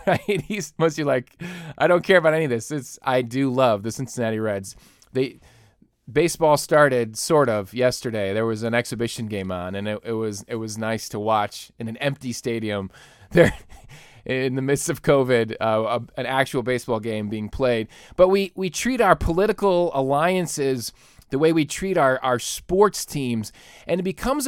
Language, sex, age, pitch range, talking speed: English, male, 20-39, 120-170 Hz, 185 wpm